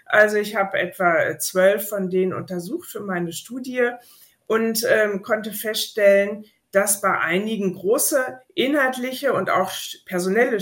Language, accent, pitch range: German, German, 180-230 Hz